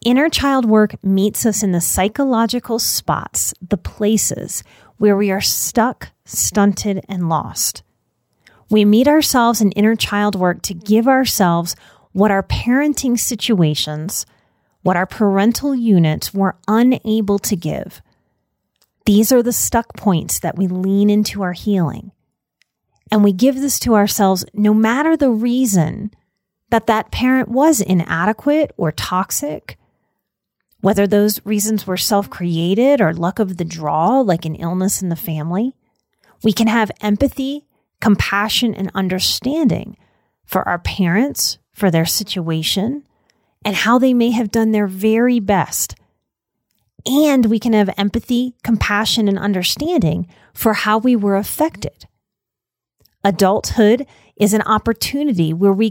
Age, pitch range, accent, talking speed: 30-49, 195-240 Hz, American, 135 wpm